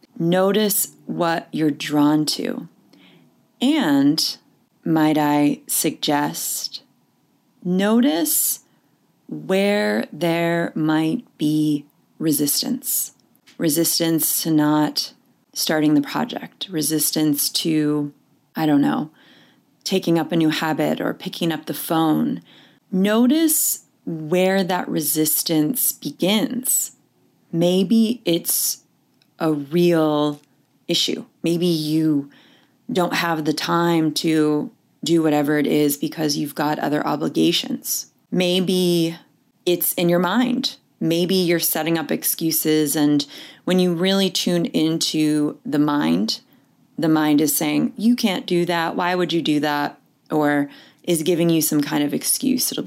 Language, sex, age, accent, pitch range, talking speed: English, female, 30-49, American, 150-190 Hz, 115 wpm